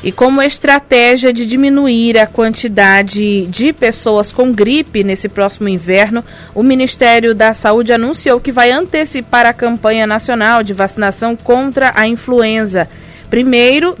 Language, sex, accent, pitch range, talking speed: Portuguese, female, Brazilian, 205-240 Hz, 135 wpm